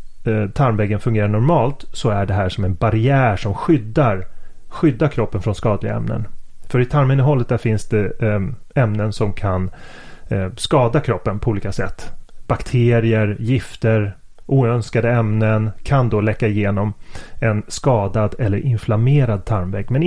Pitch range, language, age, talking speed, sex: 105-125 Hz, Swedish, 30-49, 130 wpm, male